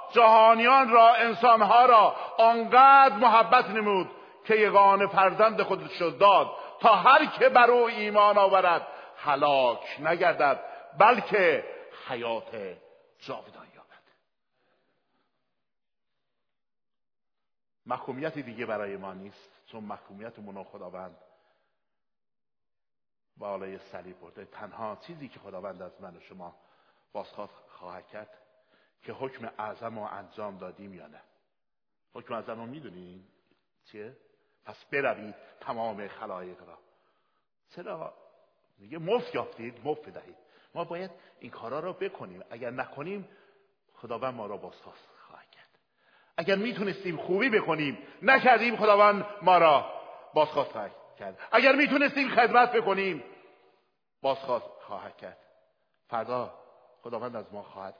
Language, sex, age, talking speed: Persian, male, 50-69, 110 wpm